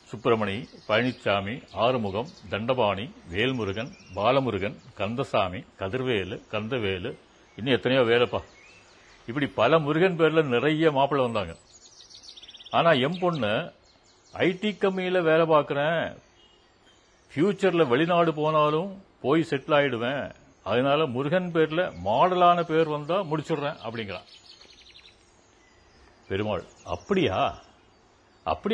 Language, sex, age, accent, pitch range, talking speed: English, male, 60-79, Indian, 120-160 Hz, 85 wpm